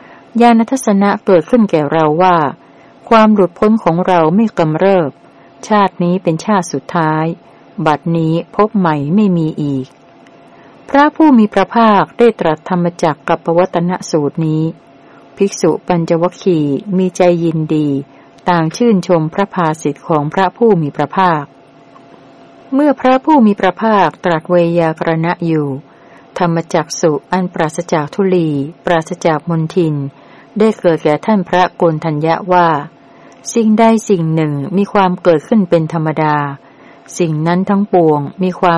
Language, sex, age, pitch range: Thai, female, 60-79, 160-195 Hz